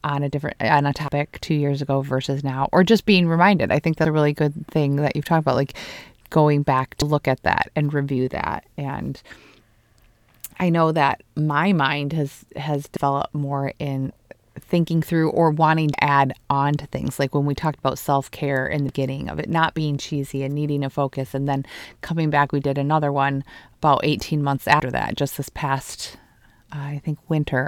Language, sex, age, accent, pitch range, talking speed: English, female, 30-49, American, 140-160 Hz, 200 wpm